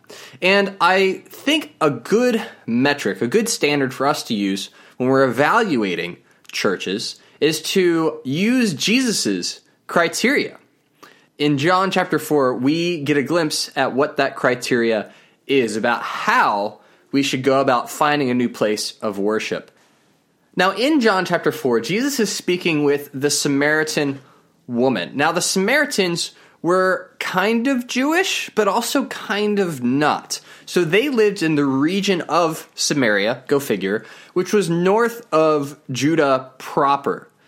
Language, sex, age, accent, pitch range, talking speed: English, male, 20-39, American, 135-195 Hz, 140 wpm